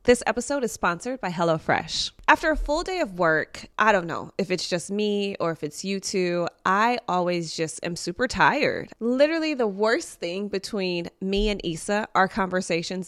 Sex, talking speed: female, 185 wpm